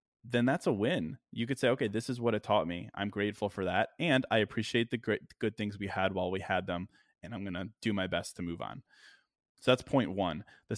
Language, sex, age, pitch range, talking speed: English, male, 20-39, 95-115 Hz, 255 wpm